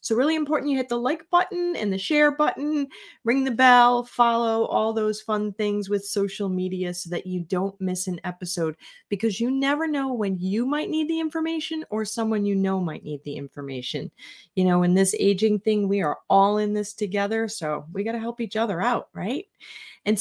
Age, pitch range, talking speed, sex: 30-49, 175-225 Hz, 210 wpm, female